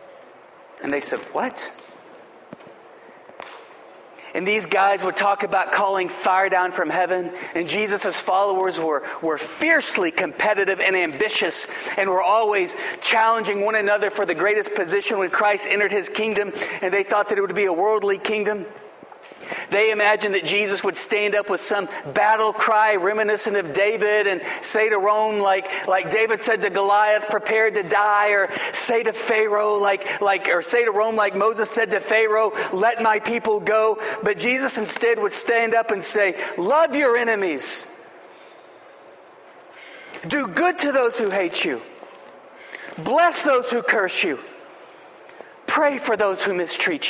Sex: male